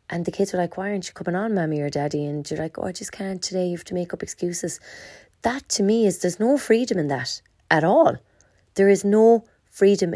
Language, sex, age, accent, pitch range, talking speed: English, female, 30-49, Irish, 145-180 Hz, 250 wpm